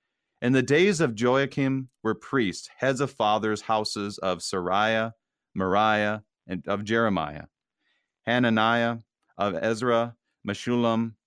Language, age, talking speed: English, 40-59, 115 wpm